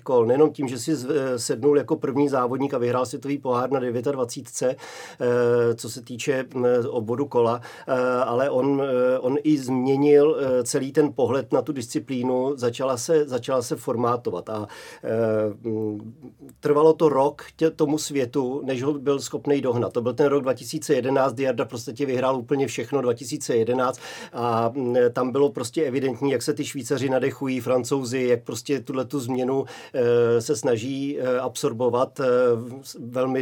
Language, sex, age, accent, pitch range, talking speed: Czech, male, 40-59, native, 120-140 Hz, 140 wpm